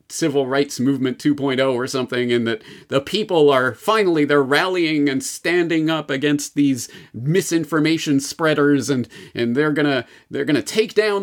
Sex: male